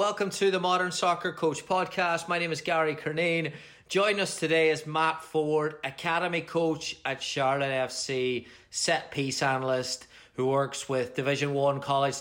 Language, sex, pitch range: English, male, 135-160 Hz